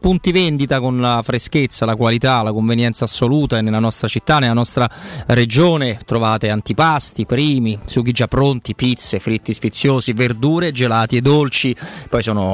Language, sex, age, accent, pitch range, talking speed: Italian, male, 30-49, native, 115-150 Hz, 155 wpm